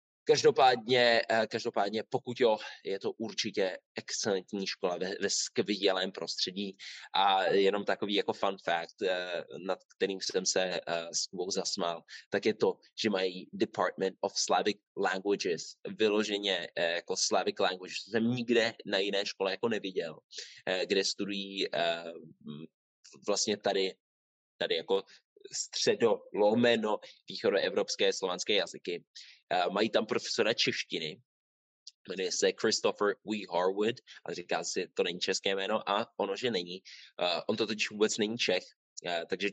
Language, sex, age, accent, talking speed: Czech, male, 20-39, native, 130 wpm